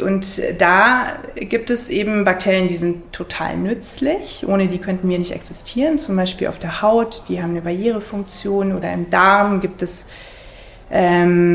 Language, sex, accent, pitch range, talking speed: German, female, German, 175-200 Hz, 160 wpm